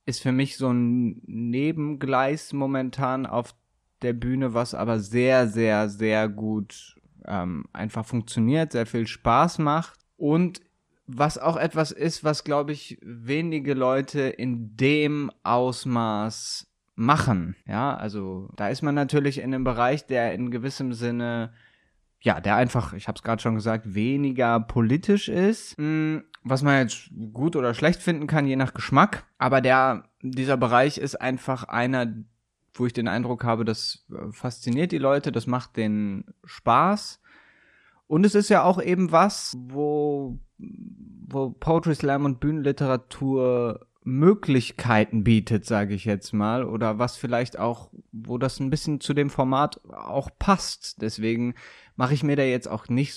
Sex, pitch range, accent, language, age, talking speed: male, 115-145 Hz, German, German, 20-39, 150 wpm